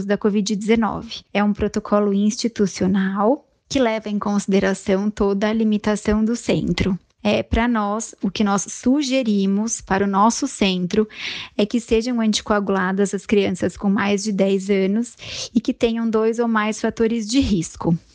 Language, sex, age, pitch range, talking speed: Portuguese, female, 20-39, 200-230 Hz, 150 wpm